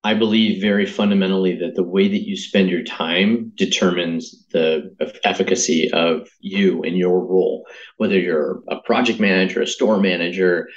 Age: 30-49